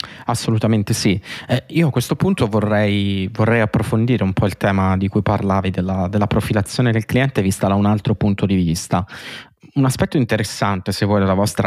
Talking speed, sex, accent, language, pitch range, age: 185 wpm, male, native, Italian, 95-110 Hz, 20-39